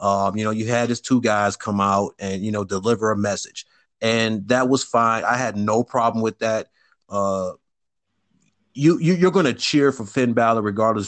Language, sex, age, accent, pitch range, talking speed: English, male, 30-49, American, 110-135 Hz, 195 wpm